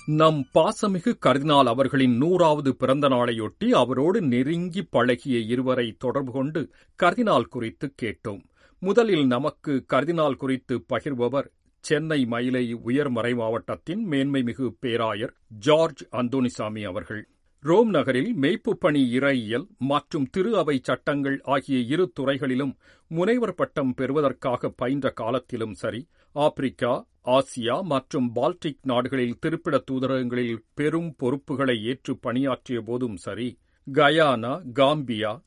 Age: 50-69